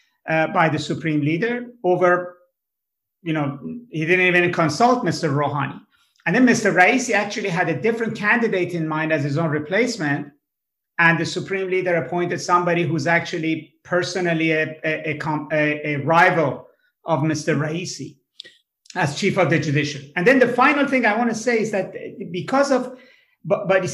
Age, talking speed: 50-69, 160 wpm